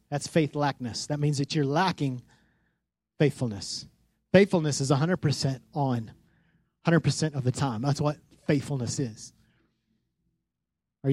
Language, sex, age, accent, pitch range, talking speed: English, male, 30-49, American, 150-205 Hz, 115 wpm